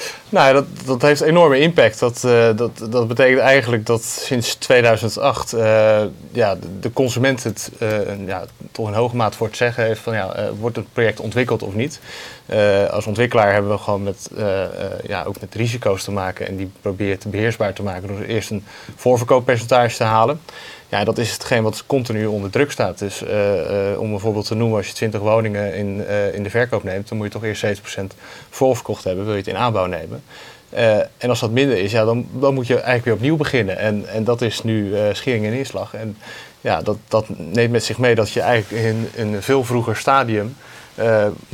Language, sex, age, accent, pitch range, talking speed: Dutch, male, 20-39, Dutch, 105-120 Hz, 215 wpm